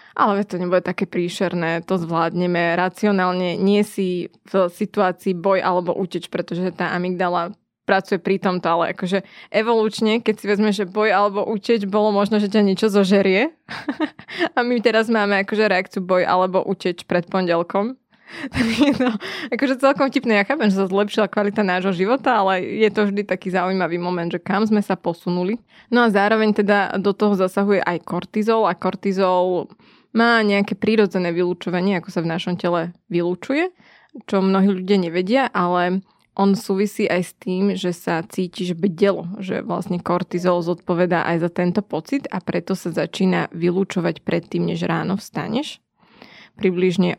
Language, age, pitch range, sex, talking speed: Slovak, 20-39, 180-210 Hz, female, 160 wpm